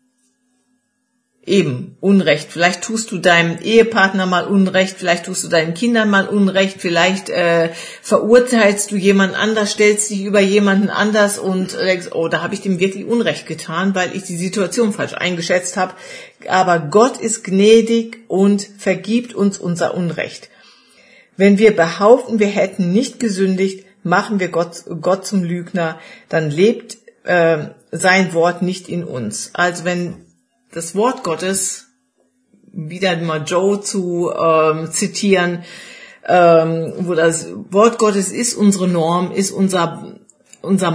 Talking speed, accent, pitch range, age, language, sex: 140 wpm, German, 170-205 Hz, 50-69, German, female